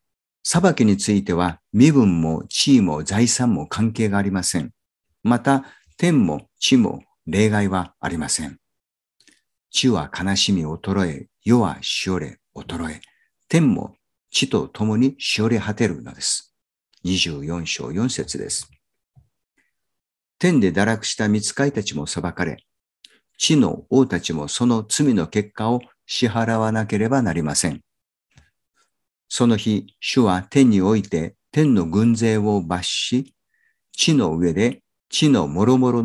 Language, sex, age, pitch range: Japanese, male, 50-69, 90-120 Hz